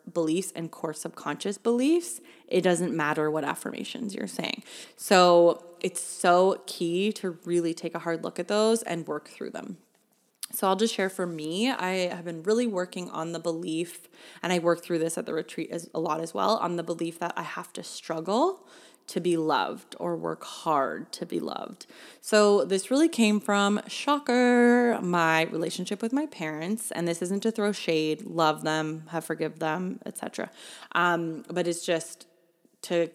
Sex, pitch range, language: female, 165-205 Hz, English